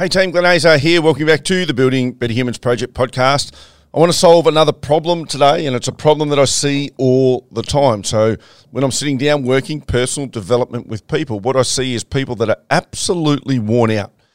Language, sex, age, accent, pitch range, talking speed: English, male, 40-59, Australian, 115-145 Hz, 215 wpm